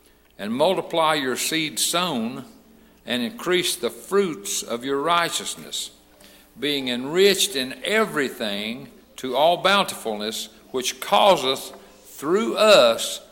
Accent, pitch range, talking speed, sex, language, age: American, 110-140 Hz, 105 wpm, male, English, 60-79